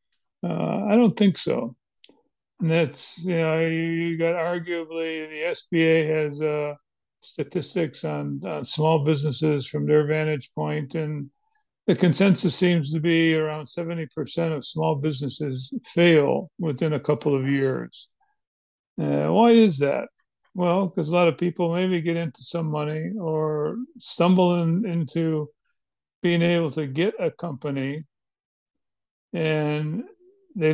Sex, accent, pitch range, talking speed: male, American, 150-170 Hz, 135 wpm